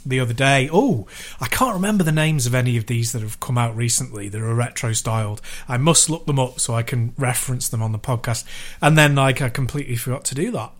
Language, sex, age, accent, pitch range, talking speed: English, male, 30-49, British, 125-155 Hz, 240 wpm